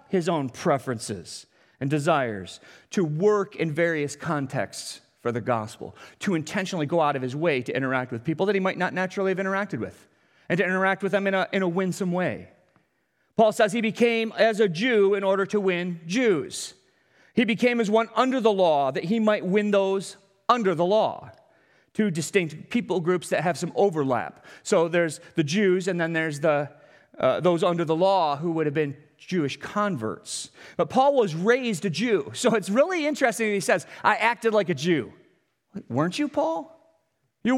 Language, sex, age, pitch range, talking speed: English, male, 40-59, 175-270 Hz, 190 wpm